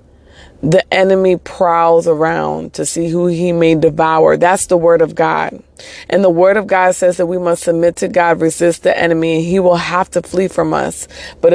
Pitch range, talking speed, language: 155-175 Hz, 205 wpm, English